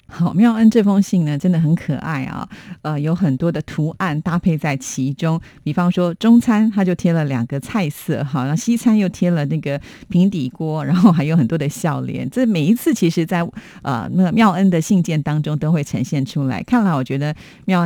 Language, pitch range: Chinese, 145-185 Hz